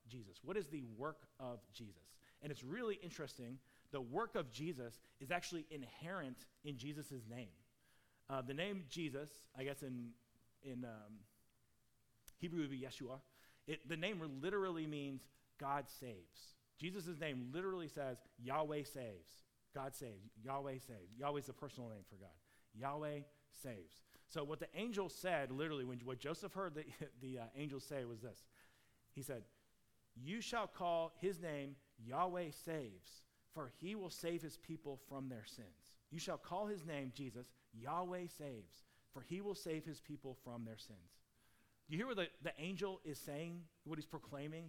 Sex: male